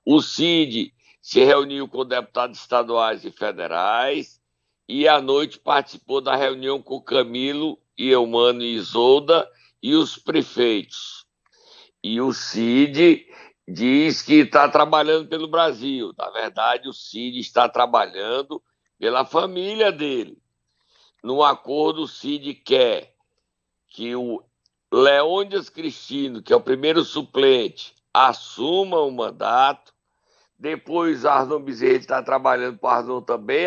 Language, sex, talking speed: Portuguese, male, 120 wpm